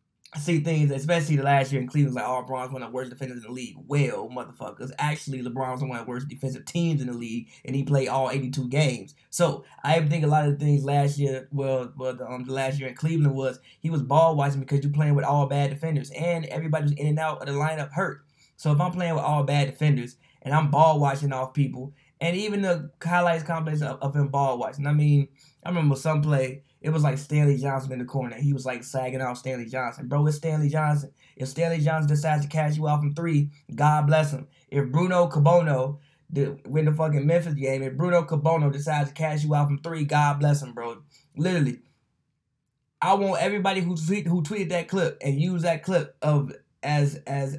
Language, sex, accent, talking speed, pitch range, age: English, male, American, 230 wpm, 135-160 Hz, 20-39